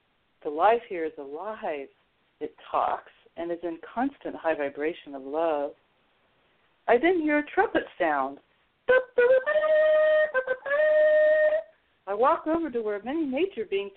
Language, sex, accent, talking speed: English, female, American, 125 wpm